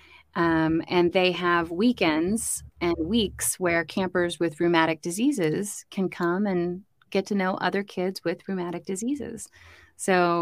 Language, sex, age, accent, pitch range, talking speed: English, female, 30-49, American, 165-200 Hz, 140 wpm